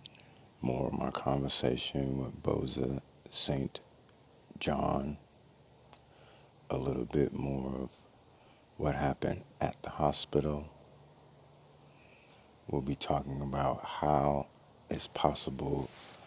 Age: 50-69